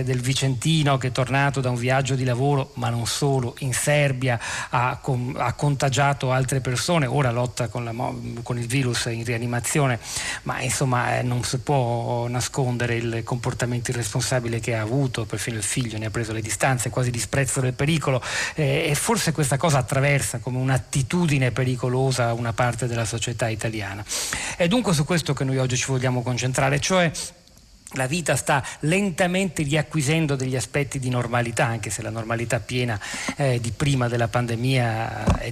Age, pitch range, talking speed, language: 40-59, 120-145 Hz, 165 wpm, Italian